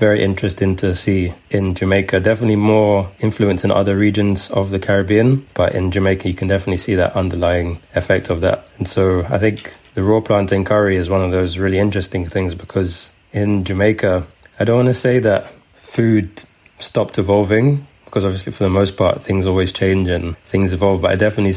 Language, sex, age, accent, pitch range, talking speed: English, male, 20-39, British, 95-100 Hz, 190 wpm